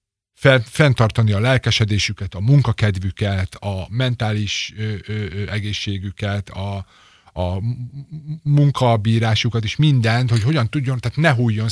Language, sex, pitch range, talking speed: Hungarian, male, 100-120 Hz, 110 wpm